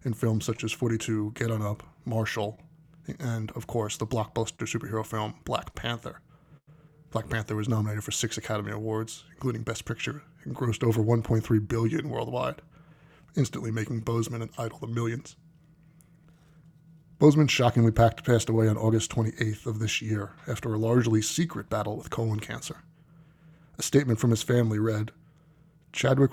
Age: 20-39